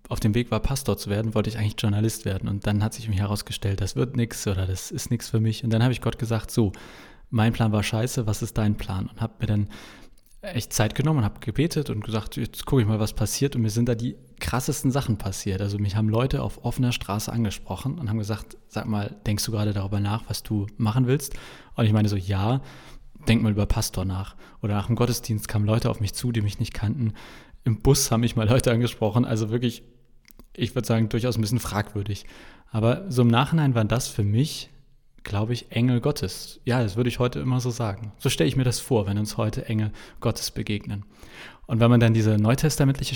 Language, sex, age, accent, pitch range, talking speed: German, male, 20-39, German, 110-125 Hz, 230 wpm